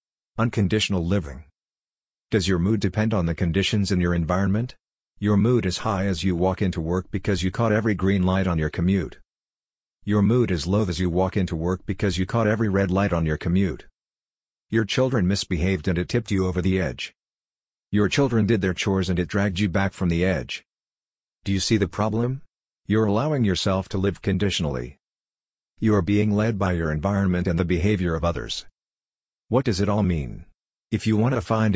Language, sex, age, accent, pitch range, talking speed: English, male, 50-69, American, 90-105 Hz, 195 wpm